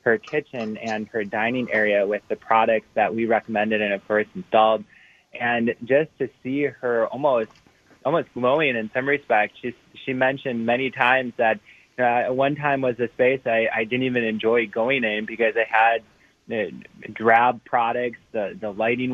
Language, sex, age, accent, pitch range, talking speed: English, male, 20-39, American, 110-125 Hz, 175 wpm